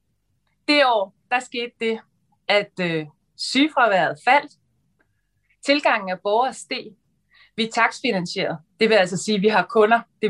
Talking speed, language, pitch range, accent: 145 wpm, Danish, 190-240 Hz, native